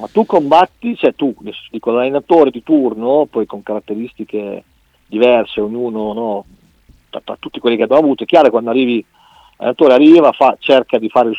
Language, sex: Italian, male